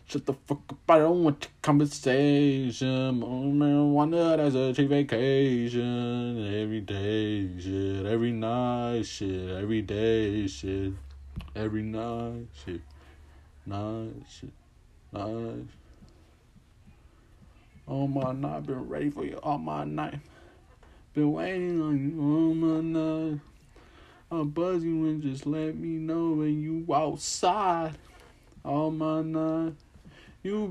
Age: 20-39